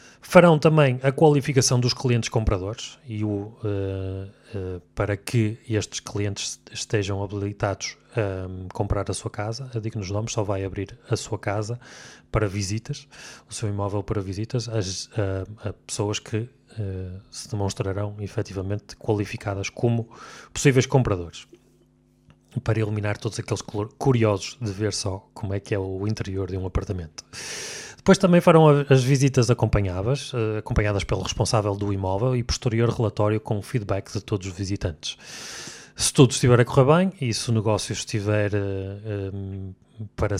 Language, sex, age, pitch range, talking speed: Portuguese, male, 20-39, 100-125 Hz, 140 wpm